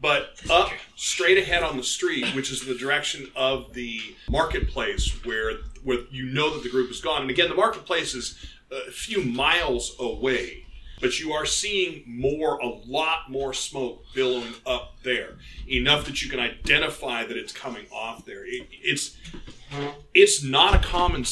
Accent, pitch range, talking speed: American, 130-185 Hz, 170 wpm